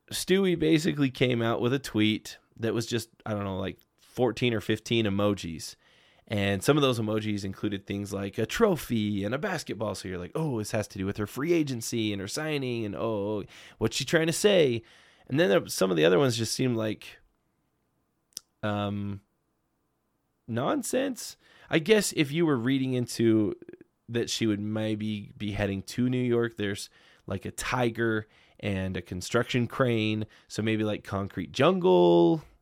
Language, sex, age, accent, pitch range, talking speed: English, male, 20-39, American, 105-135 Hz, 175 wpm